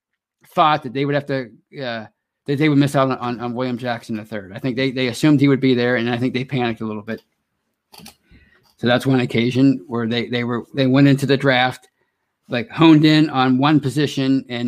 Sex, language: male, English